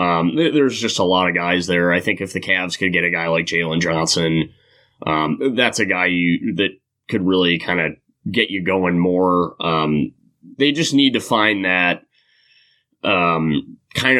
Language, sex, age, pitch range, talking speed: English, male, 20-39, 85-110 Hz, 180 wpm